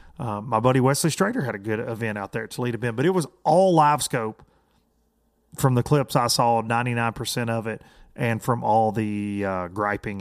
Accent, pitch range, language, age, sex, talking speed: American, 105-130 Hz, English, 30-49, male, 200 wpm